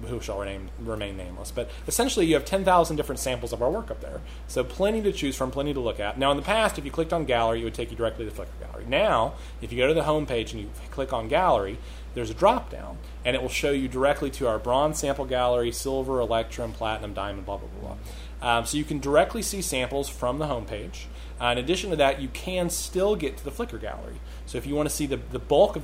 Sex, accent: male, American